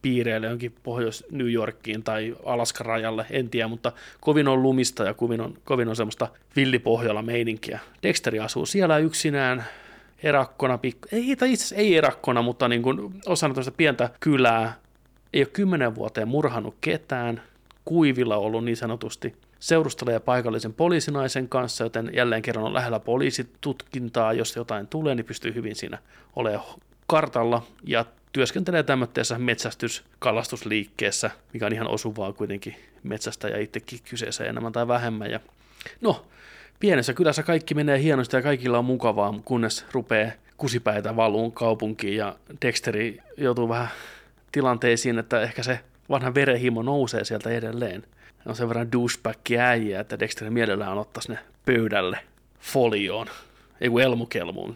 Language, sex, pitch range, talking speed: Finnish, male, 115-130 Hz, 140 wpm